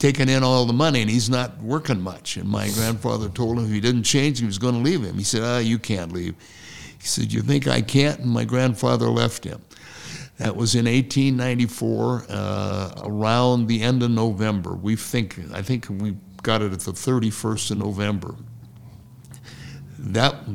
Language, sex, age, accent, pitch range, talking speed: English, male, 60-79, American, 105-130 Hz, 195 wpm